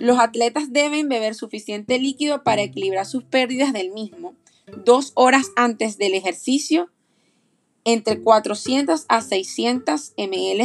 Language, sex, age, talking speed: Spanish, female, 30-49, 125 wpm